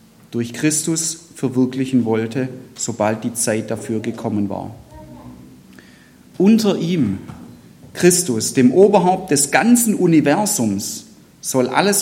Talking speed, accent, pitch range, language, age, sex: 100 wpm, German, 125-175 Hz, German, 40-59, male